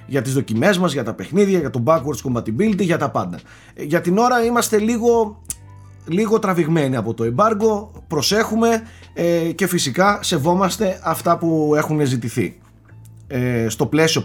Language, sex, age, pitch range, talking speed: Greek, male, 30-49, 115-170 Hz, 145 wpm